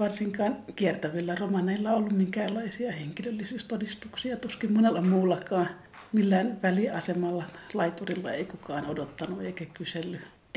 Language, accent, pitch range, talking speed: Finnish, native, 175-210 Hz, 100 wpm